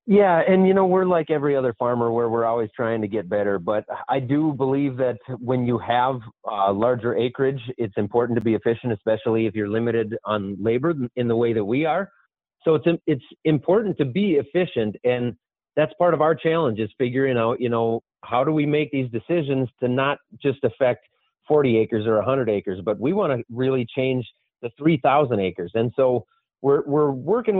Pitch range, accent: 115-145 Hz, American